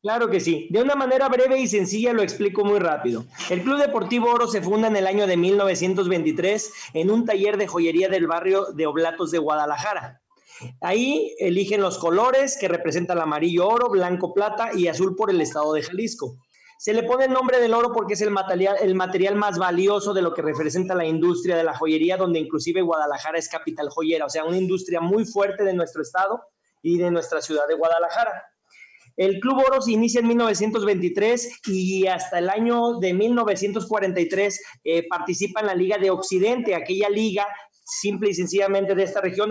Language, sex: Spanish, male